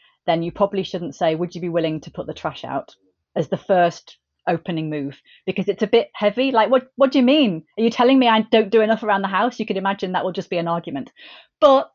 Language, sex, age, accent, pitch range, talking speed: English, female, 30-49, British, 165-210 Hz, 255 wpm